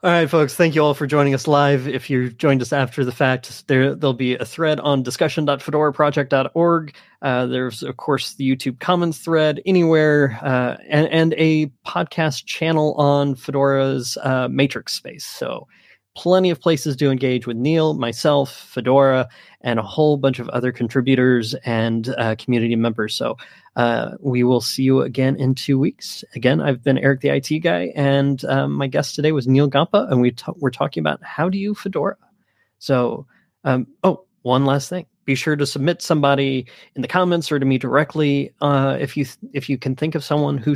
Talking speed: 190 wpm